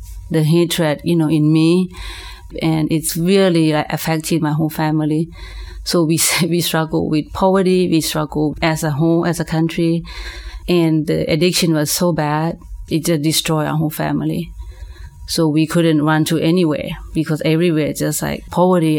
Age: 30-49